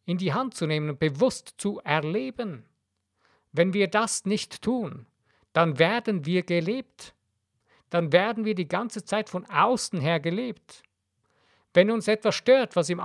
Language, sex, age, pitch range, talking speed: German, male, 50-69, 160-215 Hz, 155 wpm